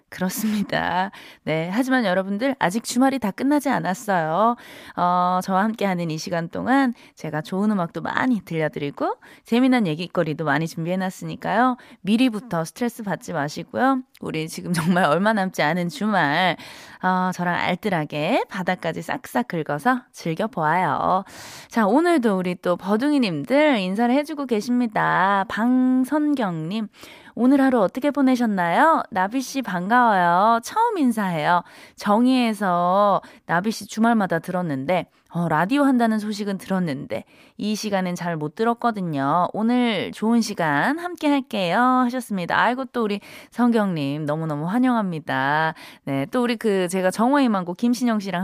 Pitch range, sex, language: 175-245 Hz, female, Korean